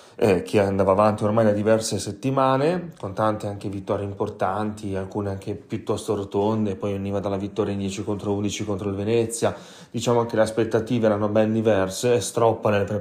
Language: Italian